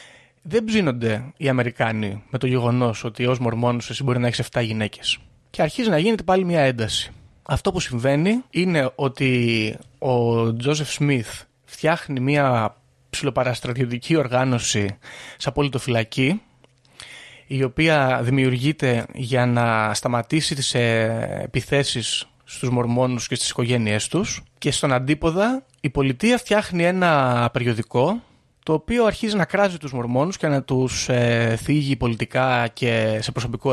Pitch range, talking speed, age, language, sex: 120-160 Hz, 130 wpm, 30-49, Greek, male